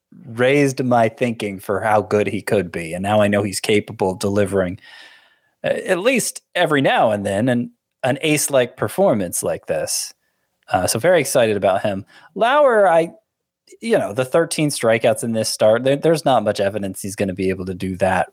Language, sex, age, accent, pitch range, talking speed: English, male, 30-49, American, 105-150 Hz, 185 wpm